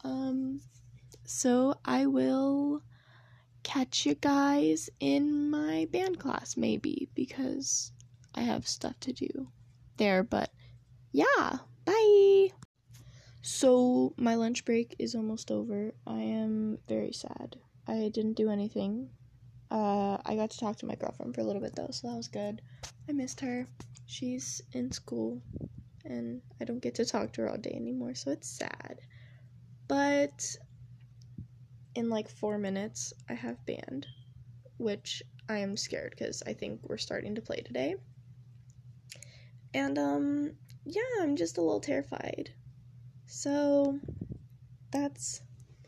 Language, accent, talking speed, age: English, American, 135 wpm, 10-29